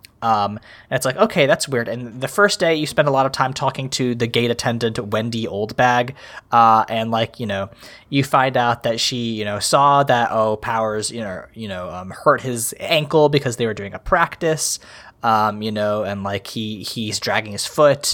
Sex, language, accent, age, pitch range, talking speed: male, English, American, 20-39, 115-185 Hz, 210 wpm